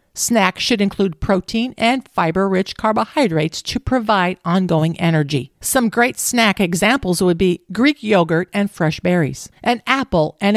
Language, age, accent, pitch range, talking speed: English, 50-69, American, 175-235 Hz, 140 wpm